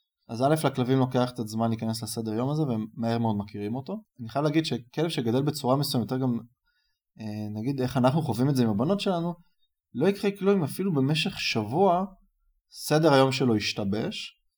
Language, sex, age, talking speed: Hebrew, male, 20-39, 175 wpm